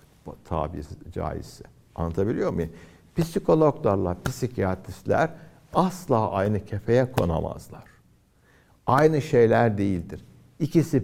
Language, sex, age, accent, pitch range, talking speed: Turkish, male, 60-79, native, 95-145 Hz, 75 wpm